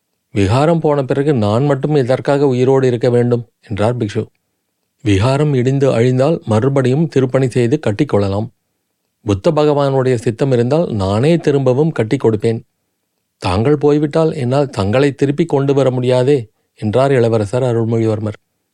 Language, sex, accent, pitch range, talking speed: Tamil, male, native, 110-135 Hz, 120 wpm